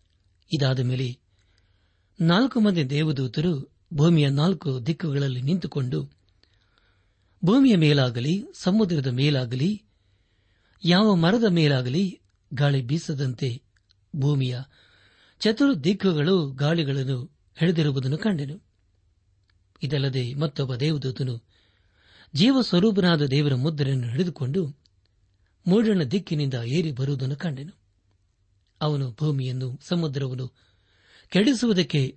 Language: Kannada